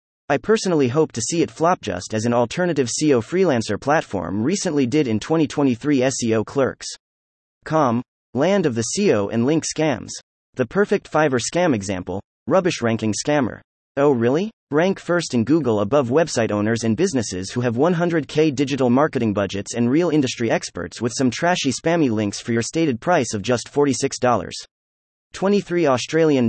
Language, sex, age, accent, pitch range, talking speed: English, male, 30-49, American, 110-160 Hz, 160 wpm